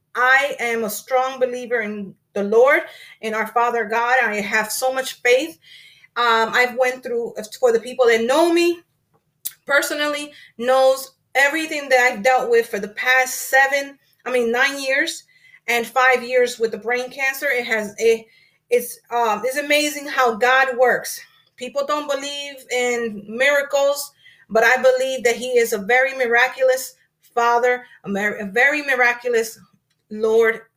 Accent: American